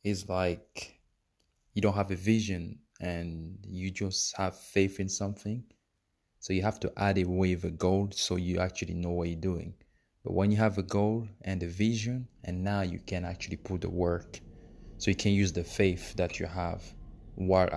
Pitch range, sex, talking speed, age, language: 90-100 Hz, male, 195 wpm, 20-39, English